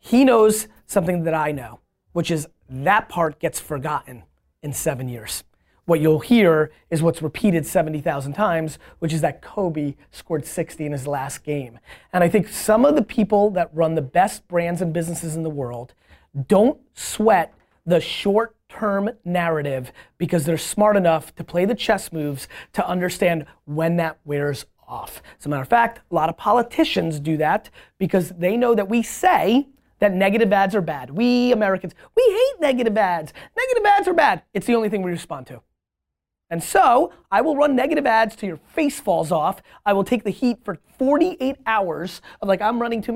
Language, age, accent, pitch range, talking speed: English, 30-49, American, 155-220 Hz, 185 wpm